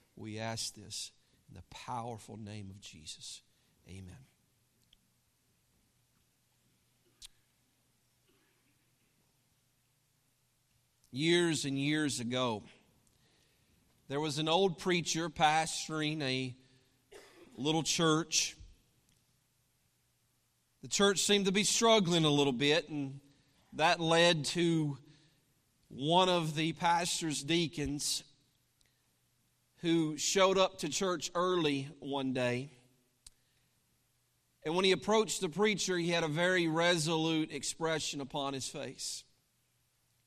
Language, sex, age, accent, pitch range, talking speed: English, male, 50-69, American, 125-185 Hz, 95 wpm